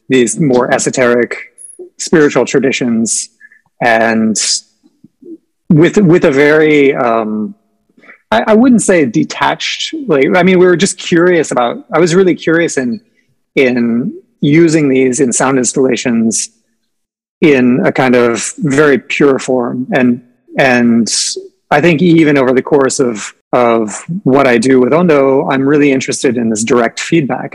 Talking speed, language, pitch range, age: 140 wpm, English, 120-165 Hz, 30-49